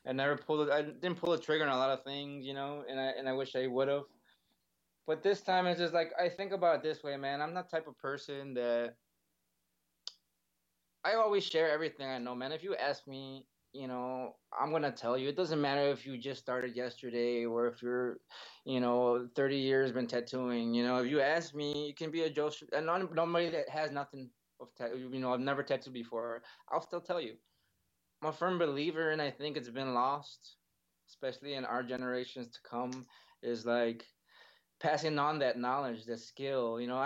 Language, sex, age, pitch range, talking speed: English, male, 20-39, 125-155 Hz, 210 wpm